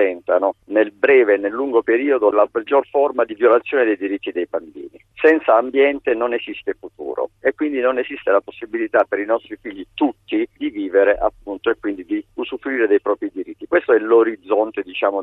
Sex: male